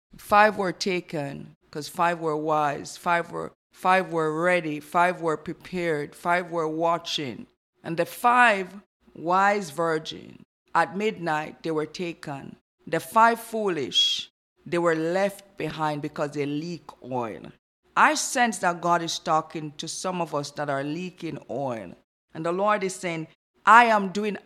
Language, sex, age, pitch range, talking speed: English, female, 50-69, 160-210 Hz, 150 wpm